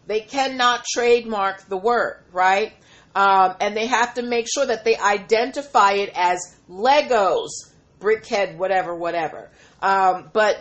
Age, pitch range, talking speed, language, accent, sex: 40-59, 200-255 Hz, 135 wpm, English, American, female